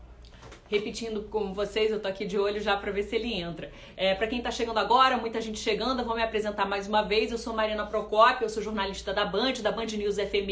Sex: female